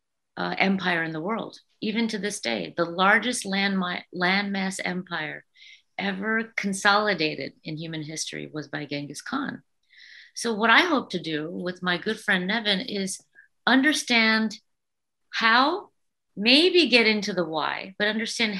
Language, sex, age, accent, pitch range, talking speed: English, female, 50-69, American, 170-225 Hz, 145 wpm